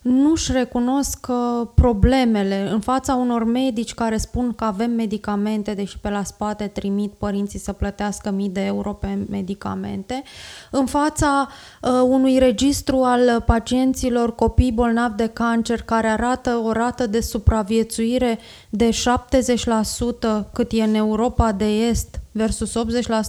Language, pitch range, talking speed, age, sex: Romanian, 220-250 Hz, 130 wpm, 20-39, female